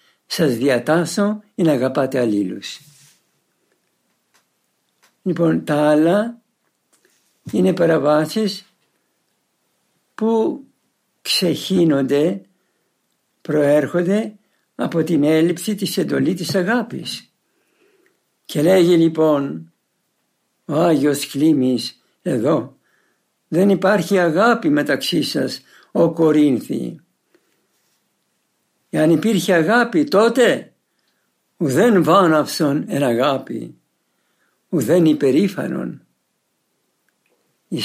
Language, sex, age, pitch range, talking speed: Greek, male, 60-79, 150-205 Hz, 75 wpm